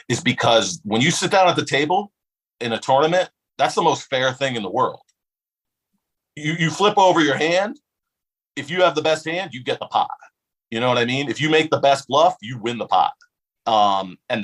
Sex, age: male, 40-59